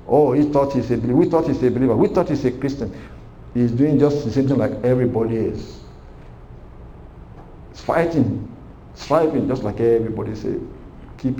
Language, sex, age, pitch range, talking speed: English, male, 60-79, 110-135 Hz, 170 wpm